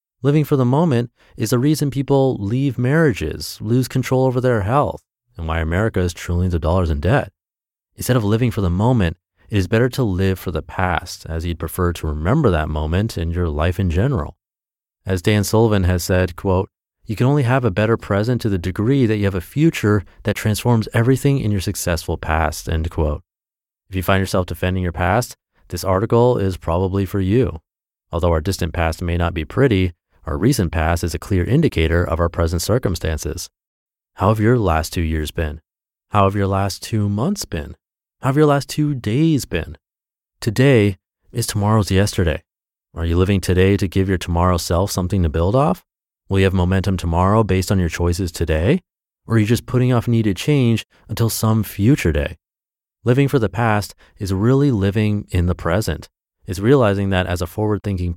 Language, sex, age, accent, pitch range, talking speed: English, male, 30-49, American, 85-115 Hz, 195 wpm